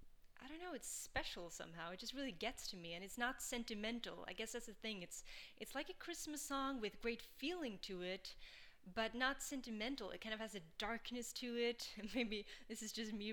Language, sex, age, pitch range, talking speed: English, female, 20-39, 185-235 Hz, 215 wpm